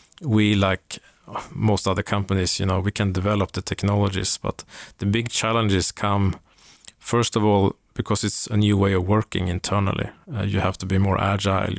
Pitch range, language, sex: 95-110 Hz, English, male